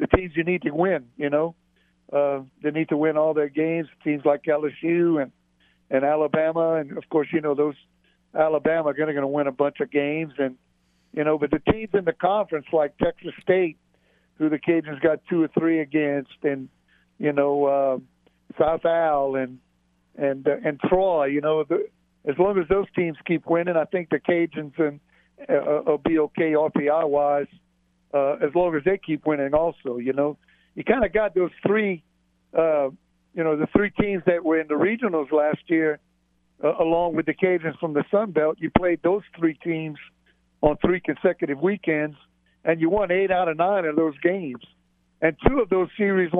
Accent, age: American, 60-79